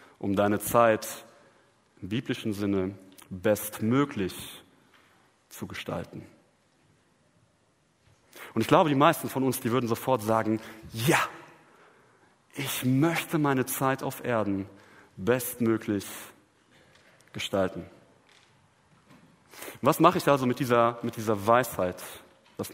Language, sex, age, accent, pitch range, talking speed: German, male, 30-49, German, 105-130 Hz, 105 wpm